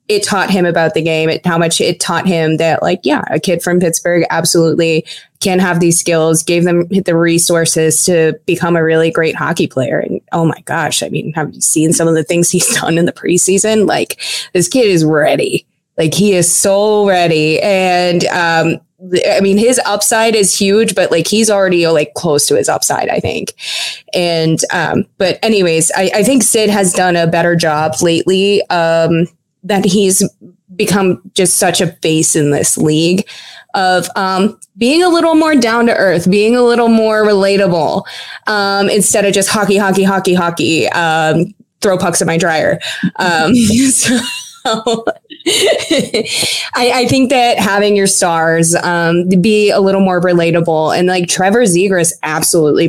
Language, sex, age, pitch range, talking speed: English, female, 20-39, 165-205 Hz, 175 wpm